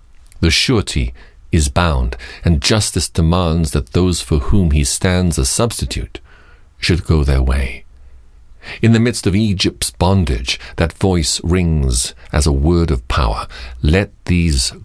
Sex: male